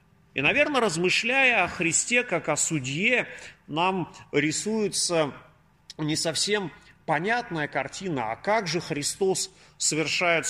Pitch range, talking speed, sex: 145-185 Hz, 110 wpm, male